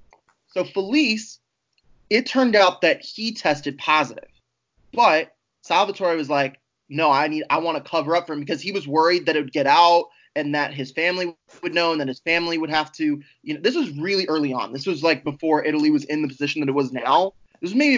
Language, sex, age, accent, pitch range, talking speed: English, male, 20-39, American, 145-195 Hz, 225 wpm